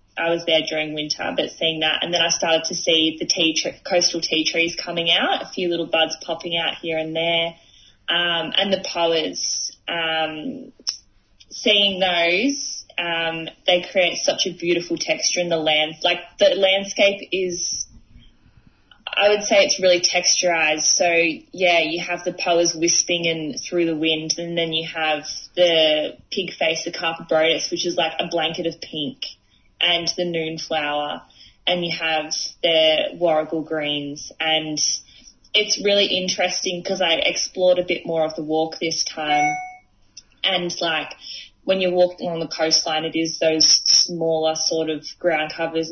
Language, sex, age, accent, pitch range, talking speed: English, female, 20-39, Australian, 160-175 Hz, 165 wpm